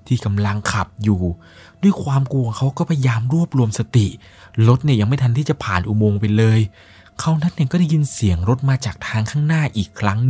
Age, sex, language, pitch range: 20-39, male, Thai, 95-125 Hz